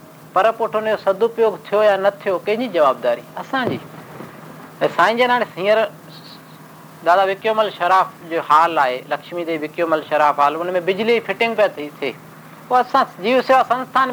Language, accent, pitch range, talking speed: Hindi, native, 170-225 Hz, 135 wpm